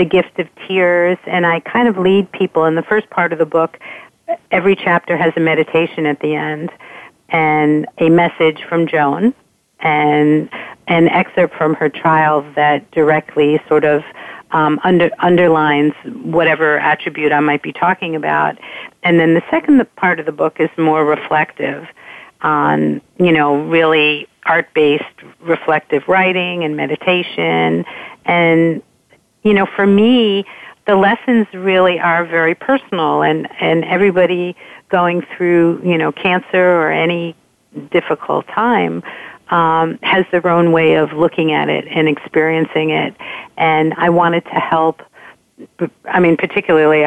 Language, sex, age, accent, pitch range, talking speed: English, female, 50-69, American, 155-180 Hz, 145 wpm